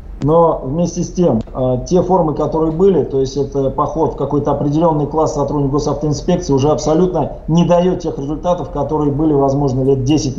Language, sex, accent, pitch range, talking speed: Russian, male, native, 135-165 Hz, 170 wpm